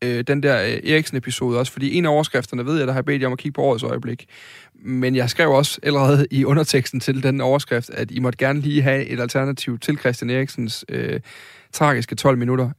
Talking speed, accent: 215 wpm, native